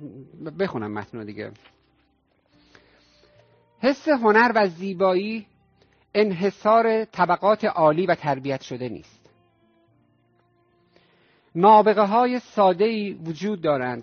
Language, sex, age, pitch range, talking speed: Persian, male, 50-69, 135-195 Hz, 80 wpm